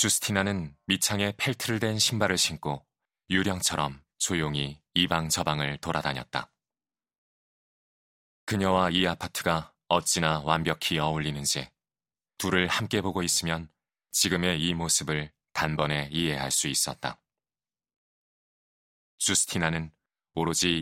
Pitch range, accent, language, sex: 80-95 Hz, native, Korean, male